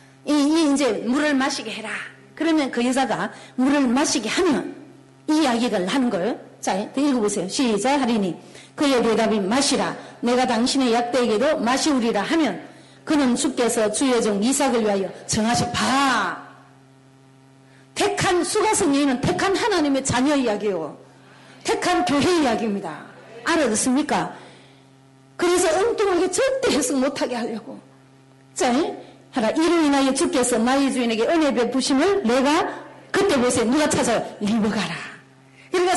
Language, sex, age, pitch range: Korean, female, 40-59, 210-300 Hz